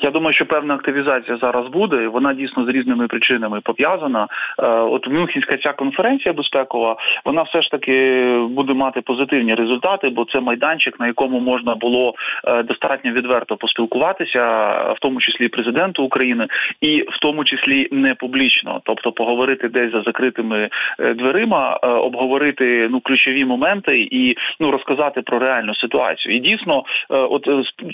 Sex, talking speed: male, 140 wpm